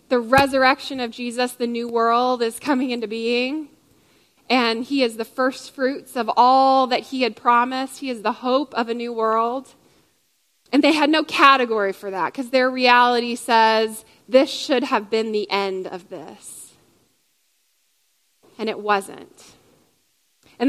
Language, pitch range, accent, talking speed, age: English, 220-265 Hz, American, 155 wpm, 20-39